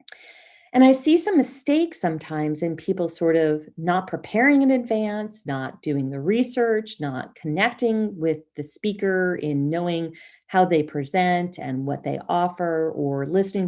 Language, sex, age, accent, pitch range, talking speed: English, female, 40-59, American, 155-220 Hz, 150 wpm